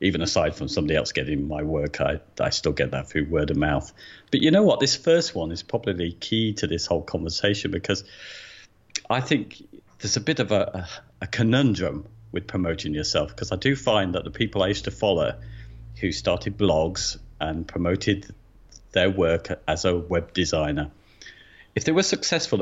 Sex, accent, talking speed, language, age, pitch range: male, British, 185 wpm, English, 50-69, 80-100 Hz